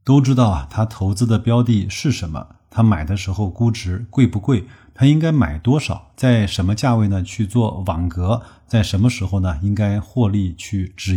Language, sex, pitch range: Chinese, male, 95-120 Hz